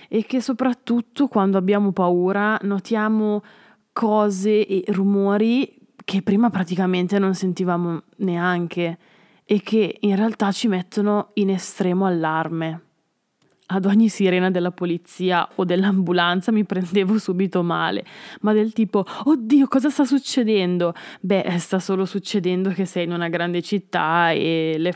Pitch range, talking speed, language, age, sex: 175-210 Hz, 130 wpm, Italian, 20-39, female